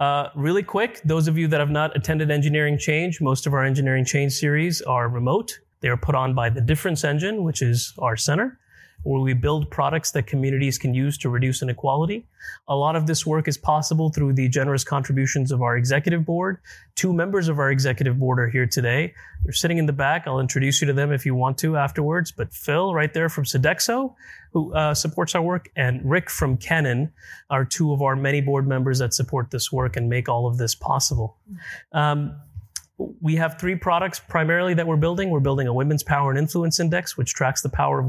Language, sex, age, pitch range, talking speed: English, male, 30-49, 130-160 Hz, 215 wpm